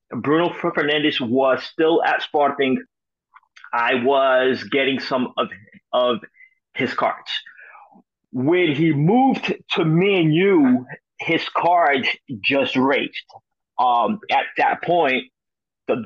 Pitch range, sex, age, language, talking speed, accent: 130-170 Hz, male, 30-49, English, 110 wpm, American